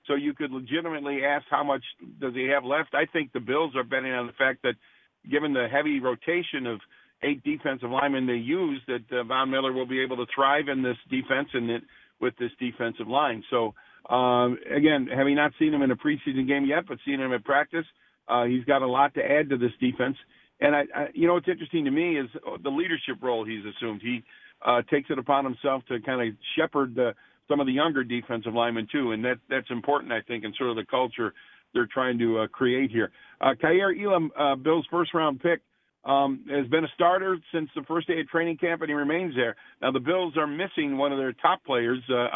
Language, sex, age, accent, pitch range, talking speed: English, male, 50-69, American, 125-155 Hz, 225 wpm